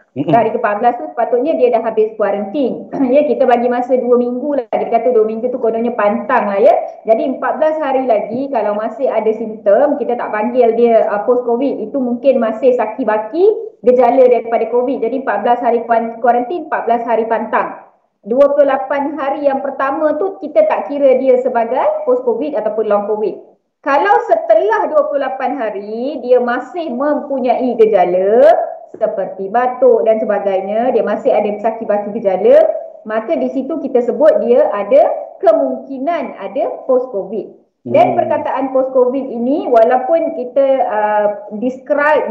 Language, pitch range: Malay, 230-295 Hz